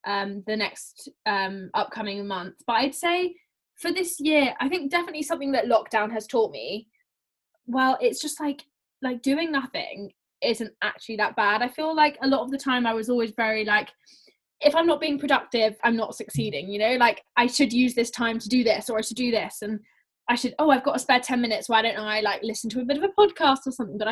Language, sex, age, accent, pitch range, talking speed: English, female, 10-29, British, 220-290 Hz, 230 wpm